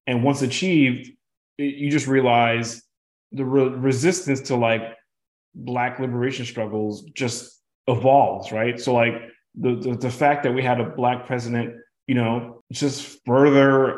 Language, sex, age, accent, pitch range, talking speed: English, male, 30-49, American, 115-135 Hz, 145 wpm